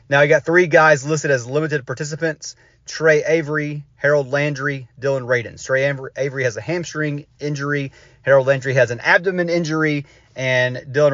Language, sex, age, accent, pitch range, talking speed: English, male, 30-49, American, 130-160 Hz, 155 wpm